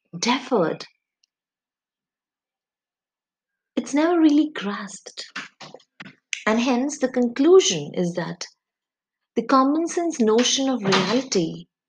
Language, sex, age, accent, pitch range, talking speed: English, female, 30-49, Indian, 195-265 Hz, 85 wpm